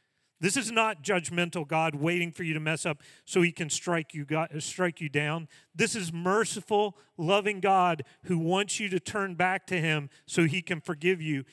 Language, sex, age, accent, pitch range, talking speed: English, male, 40-59, American, 150-200 Hz, 200 wpm